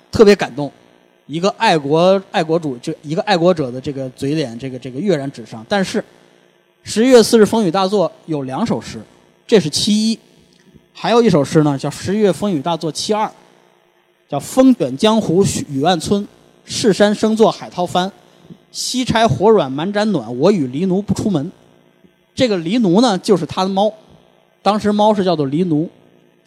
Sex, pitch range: male, 135-200 Hz